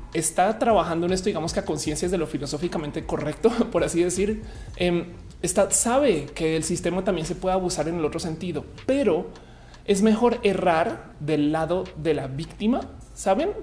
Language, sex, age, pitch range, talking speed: Spanish, male, 30-49, 155-200 Hz, 175 wpm